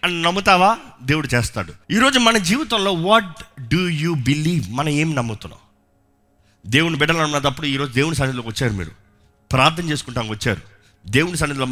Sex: male